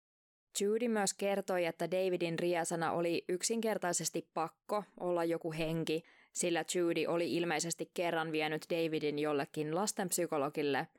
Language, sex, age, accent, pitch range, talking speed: Finnish, female, 20-39, native, 165-185 Hz, 115 wpm